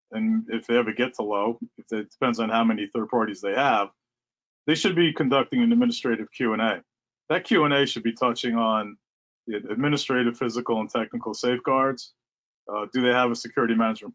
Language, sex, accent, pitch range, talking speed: English, male, American, 110-125 Hz, 180 wpm